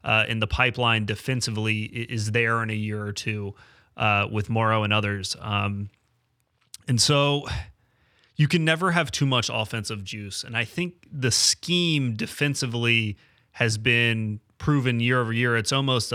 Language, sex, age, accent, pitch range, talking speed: English, male, 30-49, American, 110-125 Hz, 155 wpm